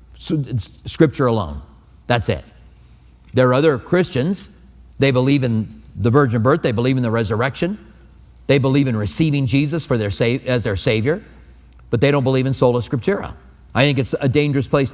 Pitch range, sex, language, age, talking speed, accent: 115-155 Hz, male, English, 40-59, 180 wpm, American